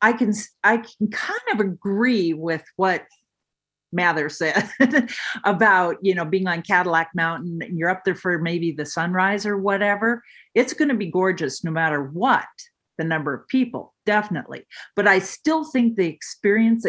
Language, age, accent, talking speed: English, 50-69, American, 165 wpm